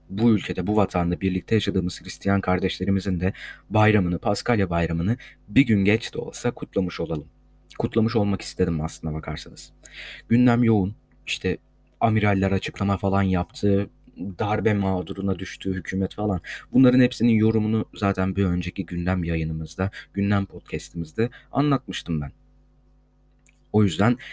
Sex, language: male, Turkish